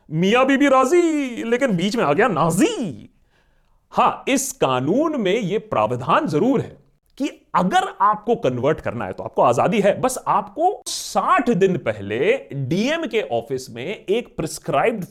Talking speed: 150 wpm